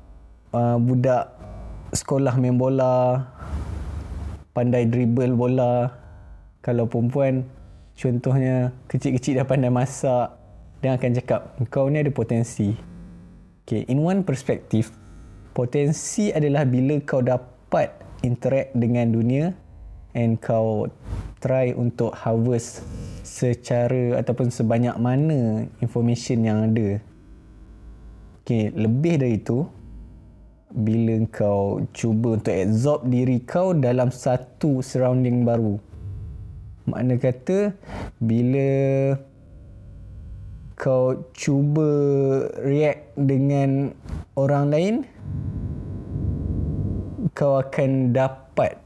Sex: male